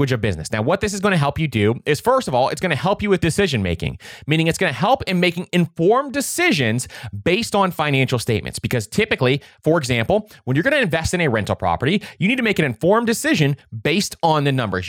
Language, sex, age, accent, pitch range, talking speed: English, male, 30-49, American, 115-175 Hz, 240 wpm